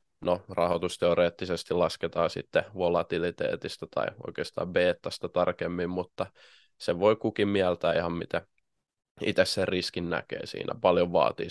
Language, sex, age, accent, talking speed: Finnish, male, 20-39, native, 125 wpm